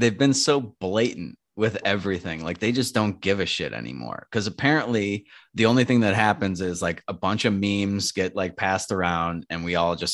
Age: 30-49